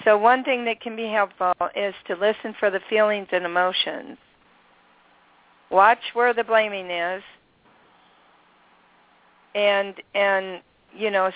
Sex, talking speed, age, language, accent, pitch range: female, 125 wpm, 50-69, English, American, 175-210 Hz